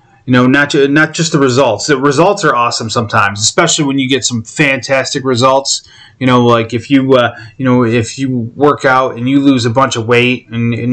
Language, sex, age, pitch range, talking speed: English, male, 30-49, 120-145 Hz, 225 wpm